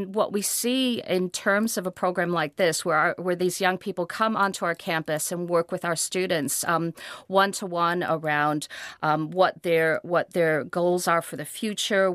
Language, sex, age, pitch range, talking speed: English, female, 40-59, 165-195 Hz, 200 wpm